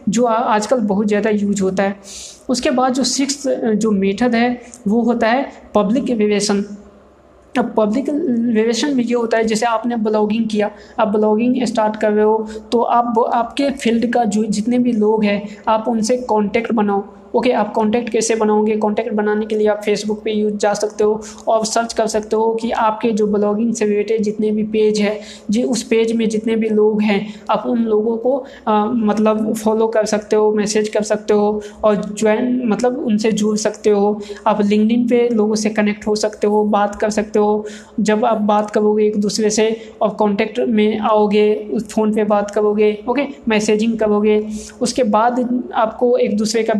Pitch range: 210-235 Hz